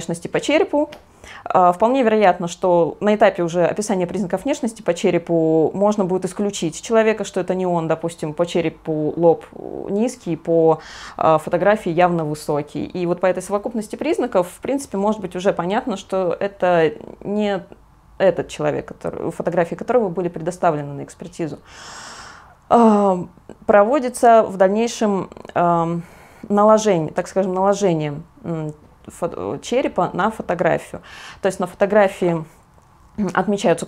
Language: Russian